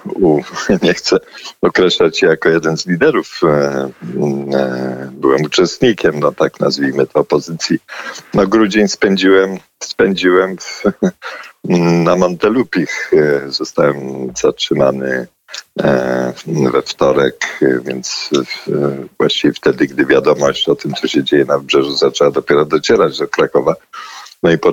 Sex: male